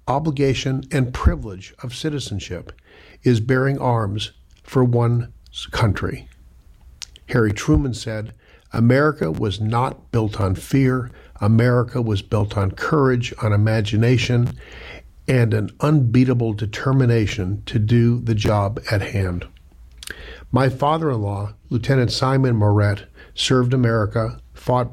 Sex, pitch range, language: male, 105-125 Hz, English